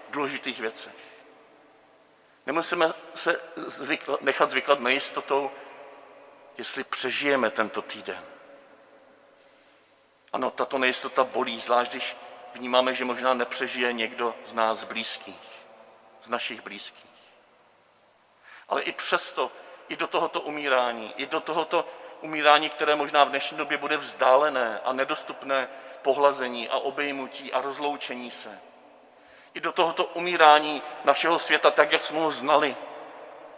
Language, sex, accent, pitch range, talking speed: Czech, male, native, 120-140 Hz, 115 wpm